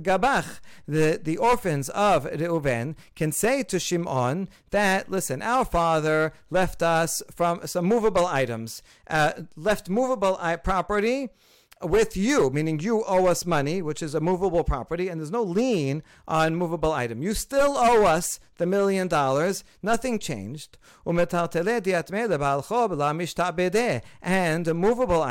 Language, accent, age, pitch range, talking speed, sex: English, American, 50-69, 155-205 Hz, 130 wpm, male